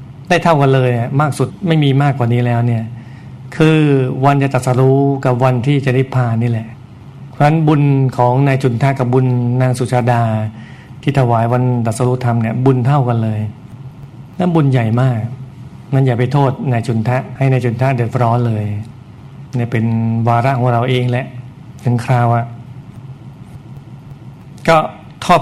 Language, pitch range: Thai, 120-135 Hz